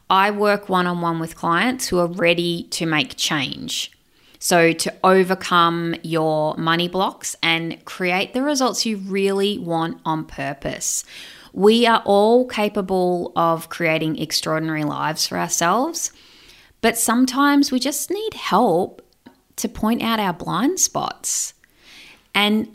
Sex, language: female, English